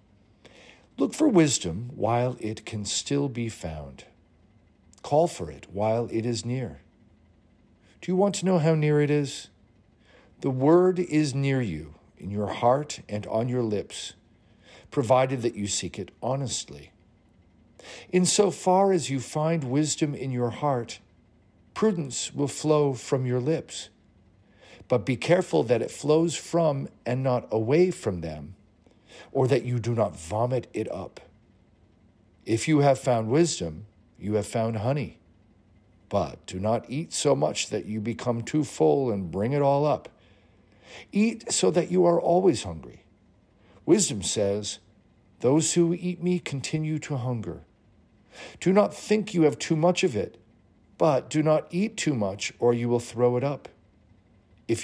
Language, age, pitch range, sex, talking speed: English, 50-69, 105-150 Hz, male, 155 wpm